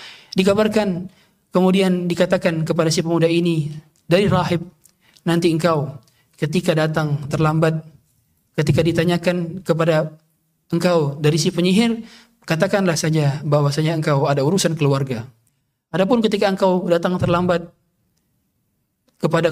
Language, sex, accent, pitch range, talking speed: Indonesian, male, native, 155-185 Hz, 105 wpm